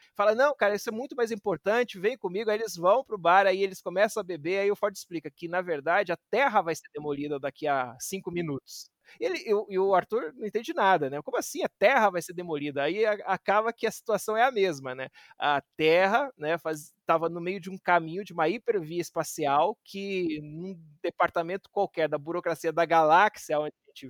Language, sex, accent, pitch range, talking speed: Portuguese, male, Brazilian, 170-215 Hz, 210 wpm